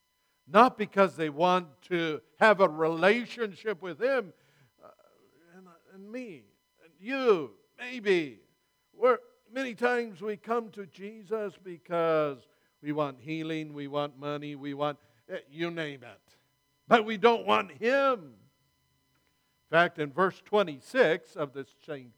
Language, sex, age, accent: English, male, 60-79, American